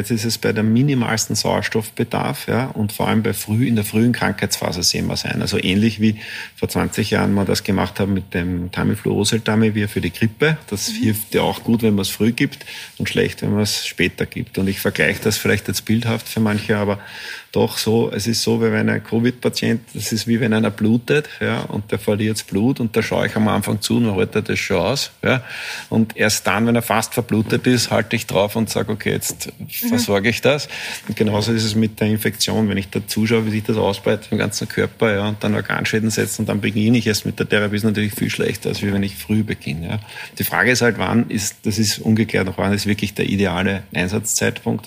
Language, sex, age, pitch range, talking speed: German, male, 50-69, 100-115 Hz, 235 wpm